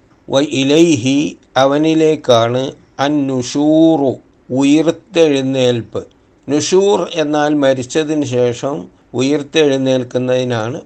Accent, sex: native, male